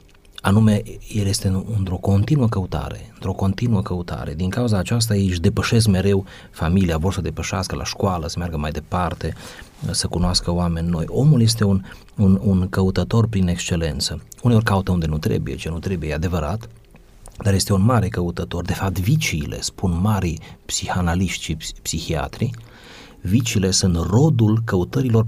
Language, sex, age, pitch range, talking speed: Romanian, male, 30-49, 90-110 Hz, 155 wpm